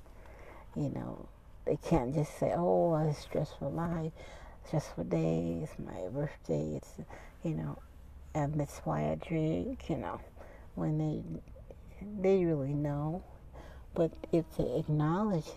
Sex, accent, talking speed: female, American, 140 wpm